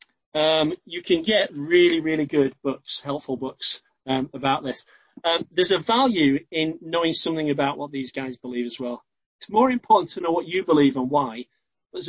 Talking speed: 190 wpm